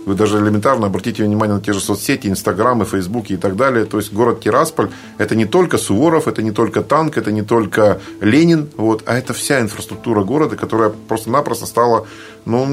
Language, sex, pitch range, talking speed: Russian, male, 100-120 Hz, 185 wpm